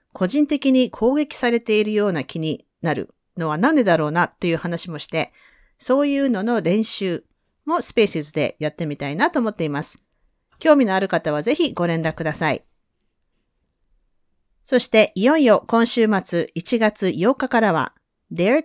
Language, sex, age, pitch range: Japanese, female, 40-59, 165-245 Hz